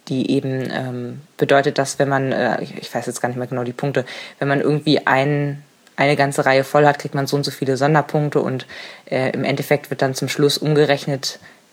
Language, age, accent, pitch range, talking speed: German, 20-39, German, 145-180 Hz, 195 wpm